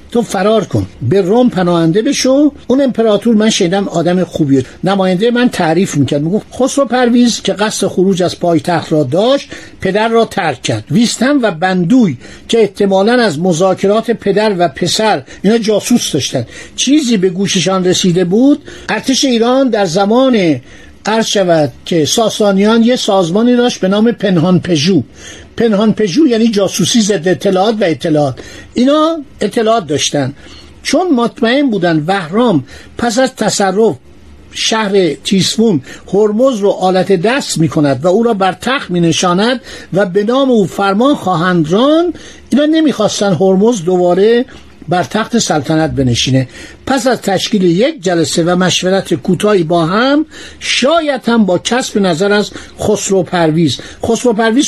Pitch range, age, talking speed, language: 180-240 Hz, 60-79, 145 wpm, Persian